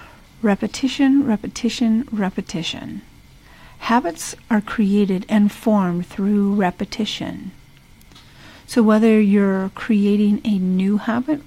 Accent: American